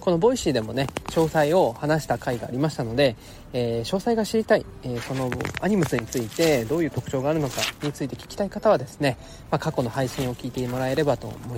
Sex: male